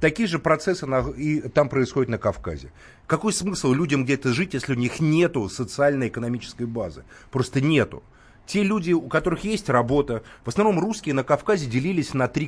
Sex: male